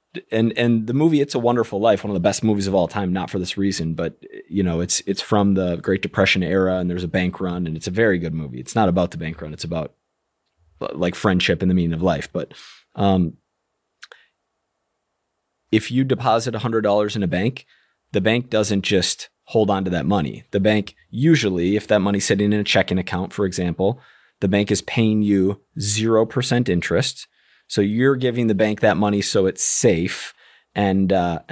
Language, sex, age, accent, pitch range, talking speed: English, male, 30-49, American, 95-110 Hz, 210 wpm